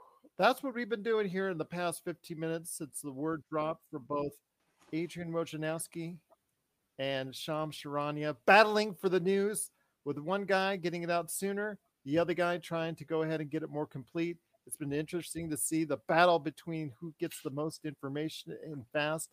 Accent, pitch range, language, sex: American, 155-190 Hz, English, male